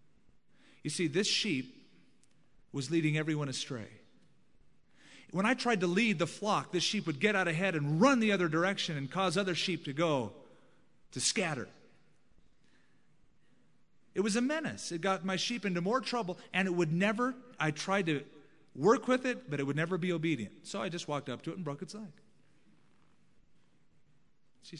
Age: 40-59